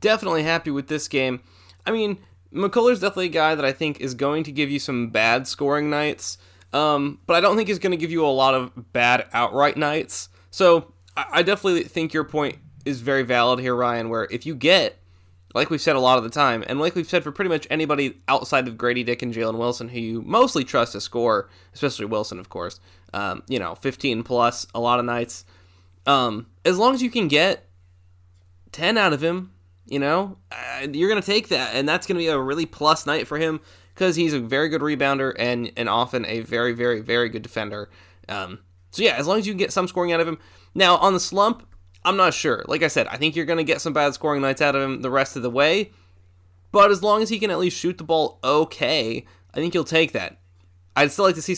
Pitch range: 110-160 Hz